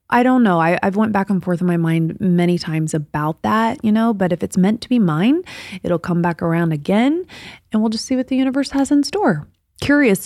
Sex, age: female, 20-39